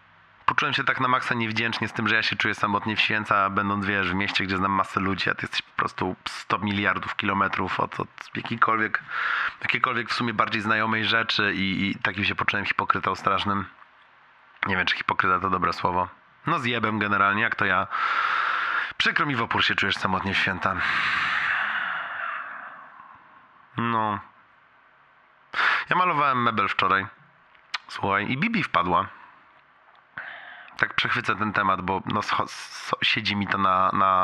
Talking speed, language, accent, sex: 155 wpm, Polish, native, male